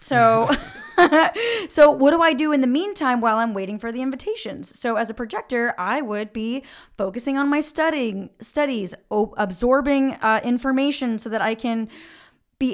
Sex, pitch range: female, 220-270 Hz